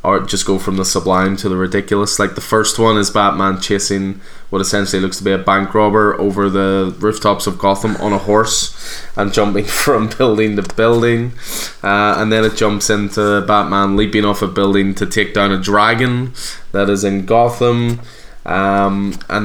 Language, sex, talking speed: English, male, 185 wpm